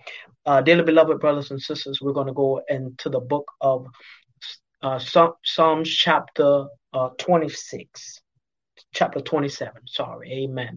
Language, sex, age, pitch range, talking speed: English, male, 30-49, 135-170 Hz, 130 wpm